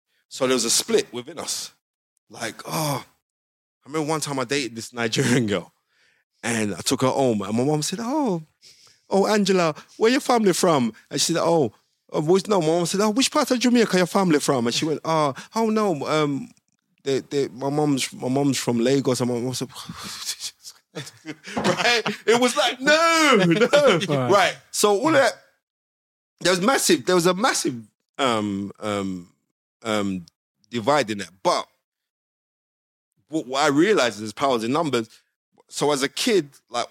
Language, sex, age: English, male, 20-39